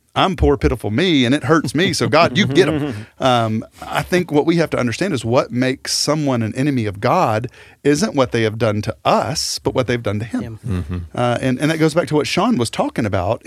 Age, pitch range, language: 40-59, 110-145 Hz, English